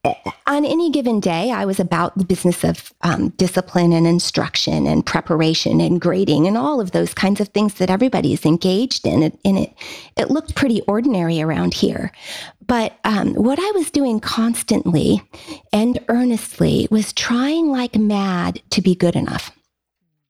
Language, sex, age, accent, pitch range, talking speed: English, female, 40-59, American, 175-235 Hz, 165 wpm